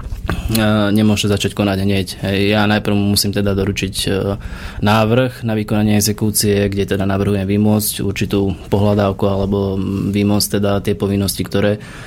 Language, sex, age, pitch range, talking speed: Slovak, male, 20-39, 95-105 Hz, 125 wpm